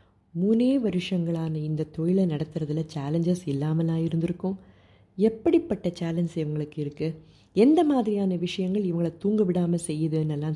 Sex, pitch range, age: female, 155-195 Hz, 30-49